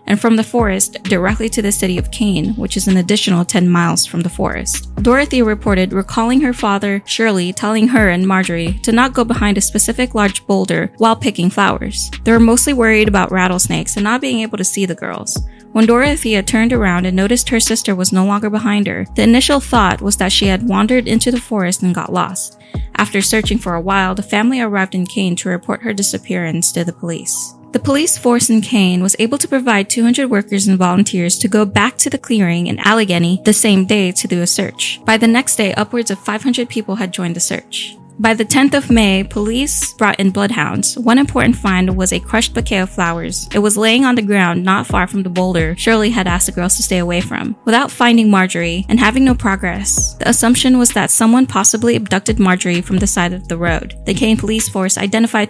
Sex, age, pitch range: female, 20-39, 185-230 Hz